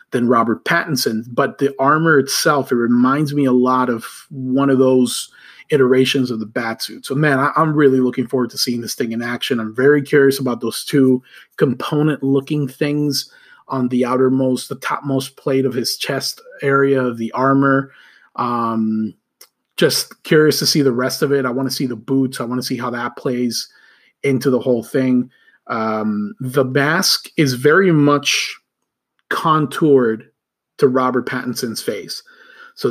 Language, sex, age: English, male, 30-49